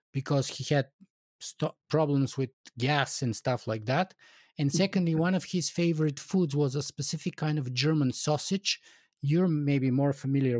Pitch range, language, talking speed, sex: 135-175 Hz, English, 160 wpm, male